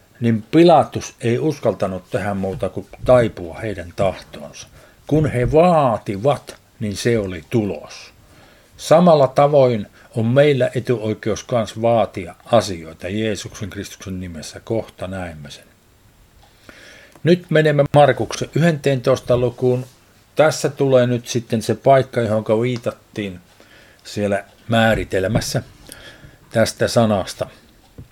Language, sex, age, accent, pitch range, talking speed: Finnish, male, 50-69, native, 100-130 Hz, 100 wpm